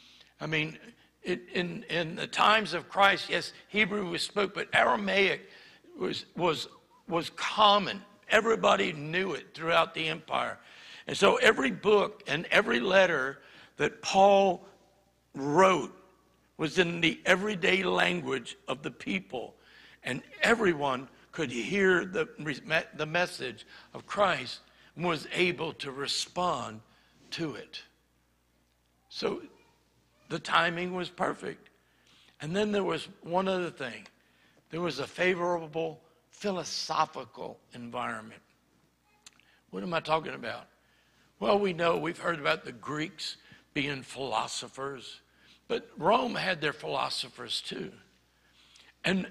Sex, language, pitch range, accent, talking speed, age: male, English, 140-195 Hz, American, 120 wpm, 60-79